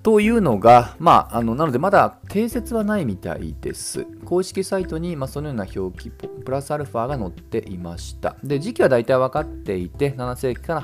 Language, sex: Japanese, male